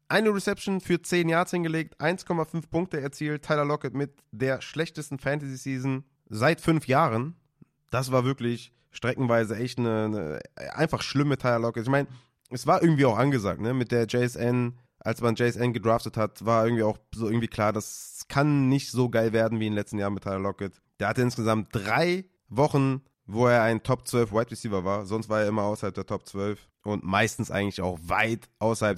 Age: 30-49